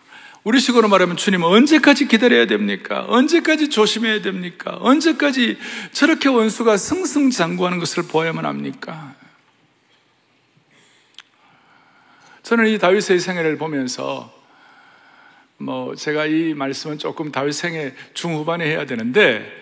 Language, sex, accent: Korean, male, native